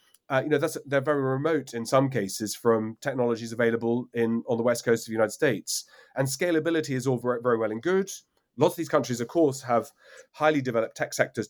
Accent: British